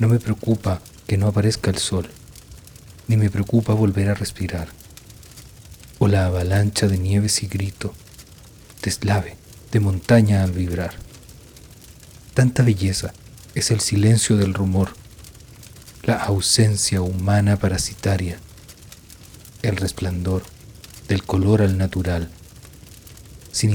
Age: 40-59